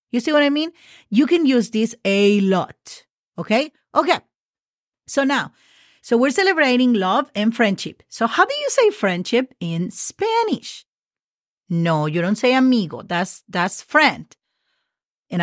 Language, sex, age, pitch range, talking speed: English, female, 40-59, 190-265 Hz, 150 wpm